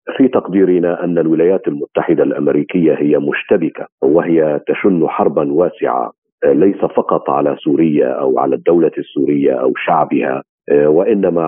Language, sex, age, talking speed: Arabic, male, 50-69, 120 wpm